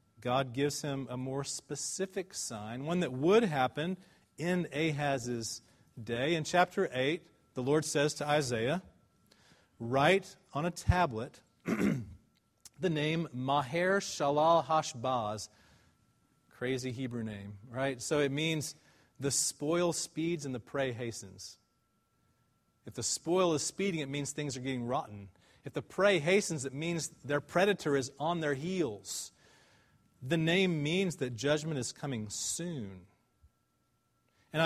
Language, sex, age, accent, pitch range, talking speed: English, male, 40-59, American, 125-165 Hz, 135 wpm